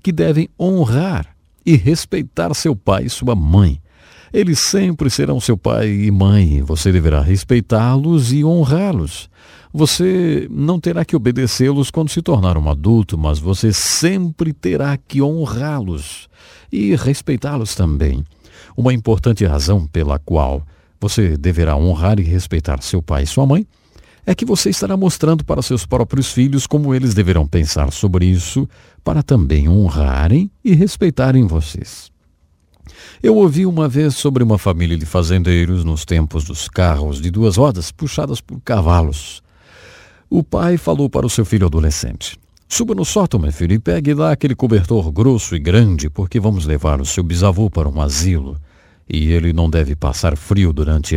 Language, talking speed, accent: English, 155 wpm, Brazilian